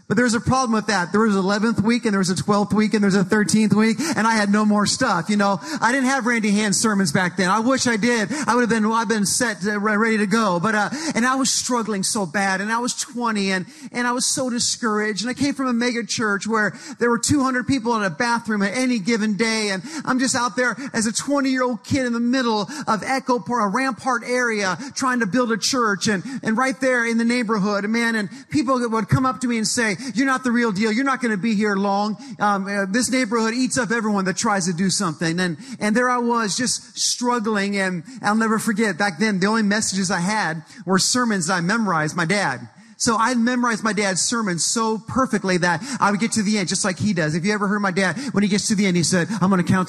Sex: male